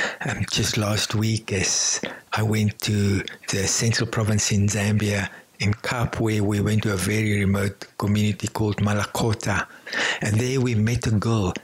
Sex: male